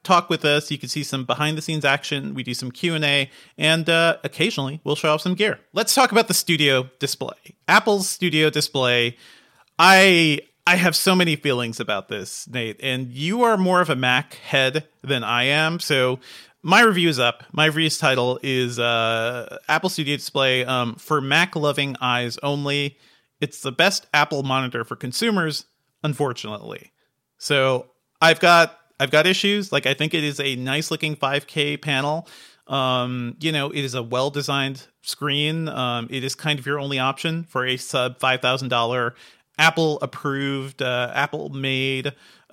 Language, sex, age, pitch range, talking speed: English, male, 40-59, 130-160 Hz, 160 wpm